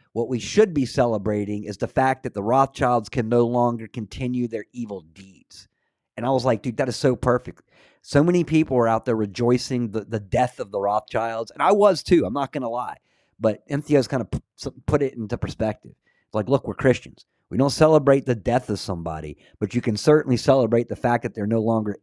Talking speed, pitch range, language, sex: 215 wpm, 105-135 Hz, English, male